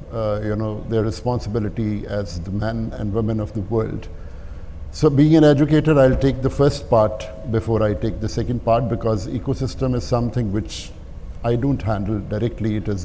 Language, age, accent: English, 50-69, Indian